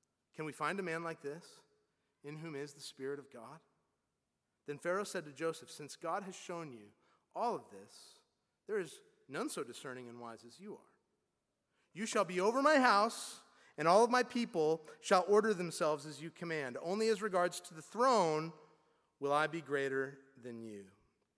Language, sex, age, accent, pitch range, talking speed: English, male, 30-49, American, 150-215 Hz, 185 wpm